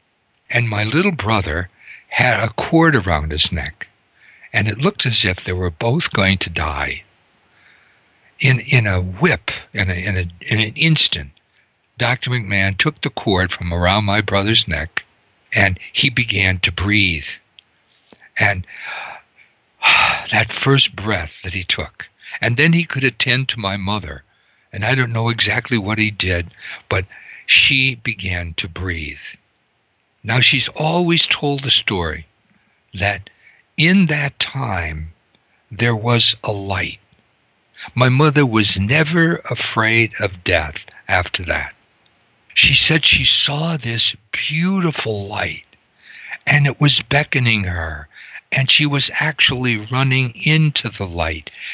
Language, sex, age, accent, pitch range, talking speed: English, male, 60-79, American, 95-135 Hz, 140 wpm